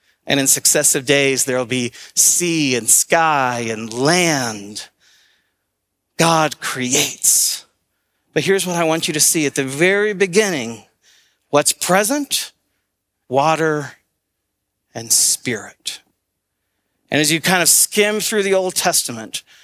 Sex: male